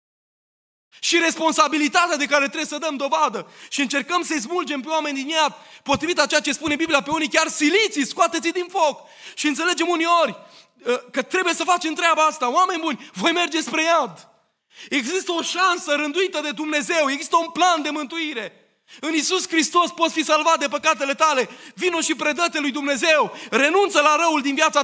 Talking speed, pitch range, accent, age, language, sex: 180 wpm, 275-330 Hz, native, 20-39, Romanian, male